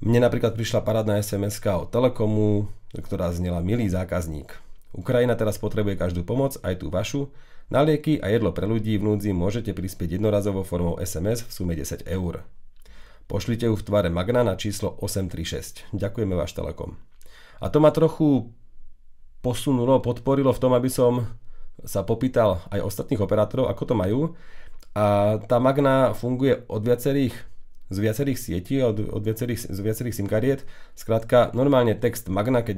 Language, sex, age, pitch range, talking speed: English, male, 40-59, 95-120 Hz, 150 wpm